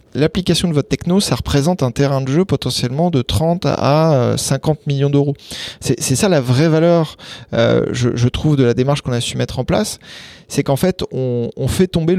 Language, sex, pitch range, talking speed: English, male, 125-155 Hz, 210 wpm